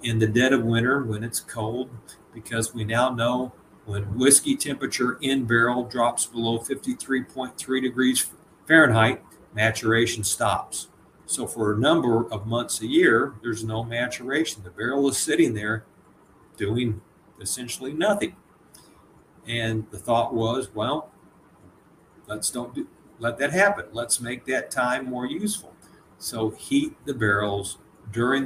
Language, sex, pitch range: English, male, 110-135 Hz